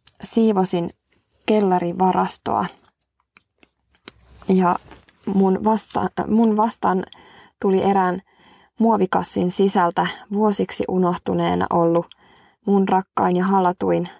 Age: 20-39